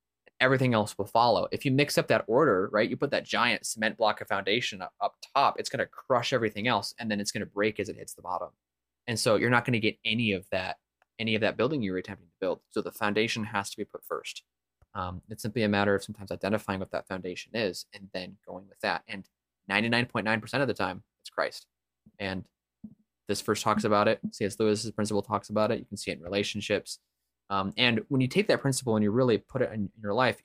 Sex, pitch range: male, 95-120 Hz